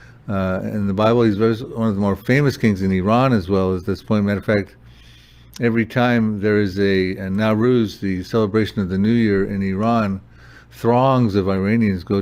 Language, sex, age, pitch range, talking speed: English, male, 60-79, 95-115 Hz, 195 wpm